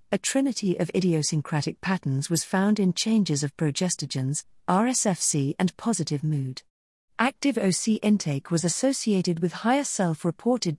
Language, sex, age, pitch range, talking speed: English, female, 50-69, 155-215 Hz, 130 wpm